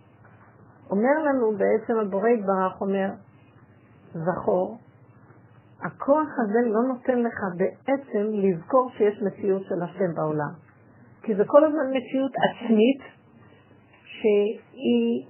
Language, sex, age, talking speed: Hebrew, female, 50-69, 100 wpm